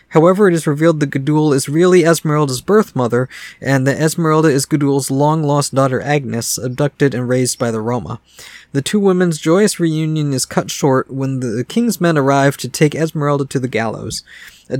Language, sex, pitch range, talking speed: English, male, 130-165 Hz, 185 wpm